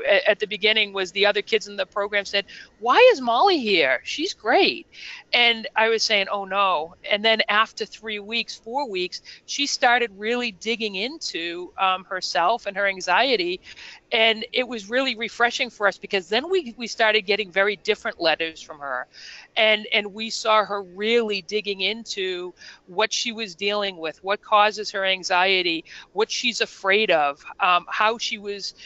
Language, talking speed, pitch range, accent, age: English, 175 wpm, 190-230 Hz, American, 40-59